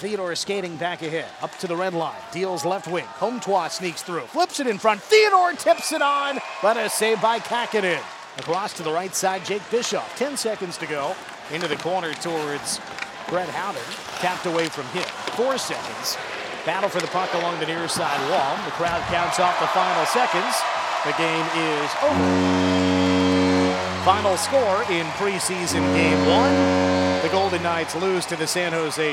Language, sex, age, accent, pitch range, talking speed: English, male, 40-59, American, 150-200 Hz, 175 wpm